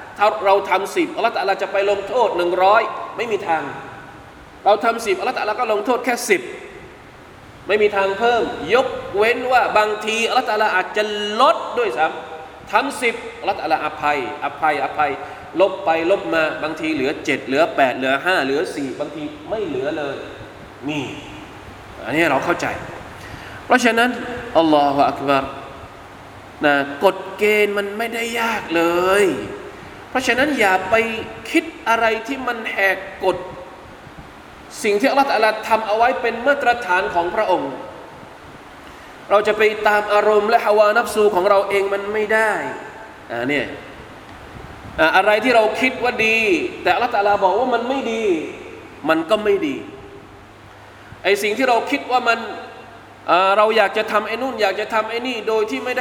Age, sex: 20-39, male